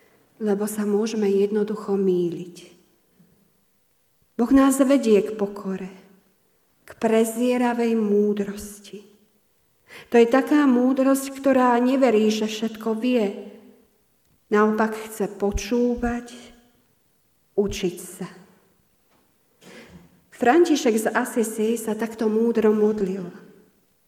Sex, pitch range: female, 205-235 Hz